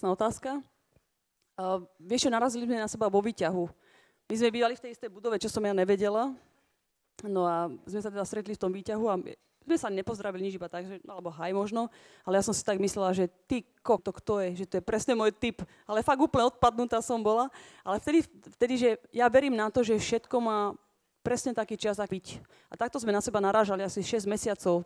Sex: female